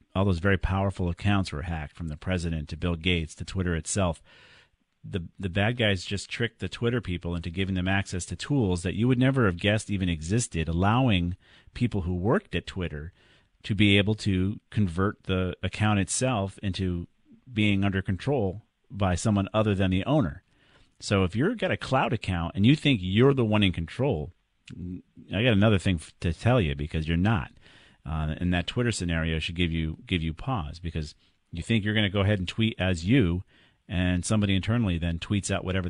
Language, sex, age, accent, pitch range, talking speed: English, male, 40-59, American, 85-105 Hz, 195 wpm